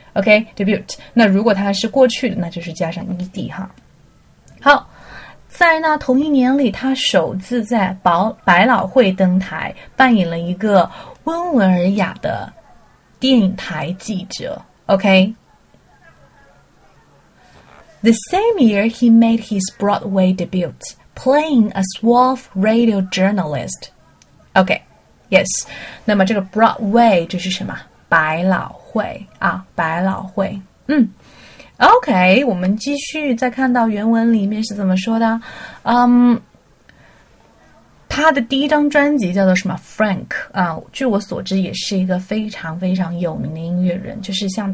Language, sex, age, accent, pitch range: Chinese, female, 20-39, native, 185-240 Hz